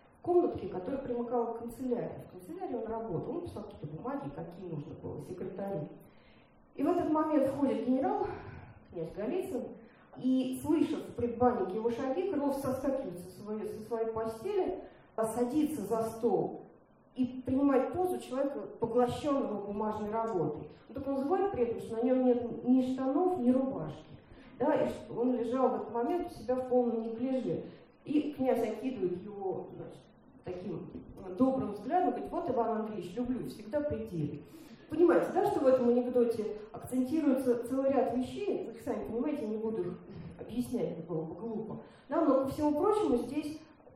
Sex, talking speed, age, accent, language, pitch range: female, 160 wpm, 40-59, native, Russian, 230-285 Hz